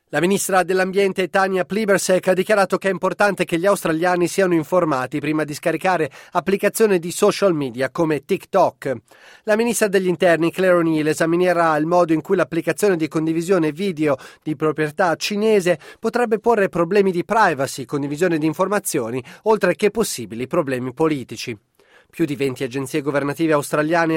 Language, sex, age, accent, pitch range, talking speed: Italian, male, 30-49, native, 155-190 Hz, 150 wpm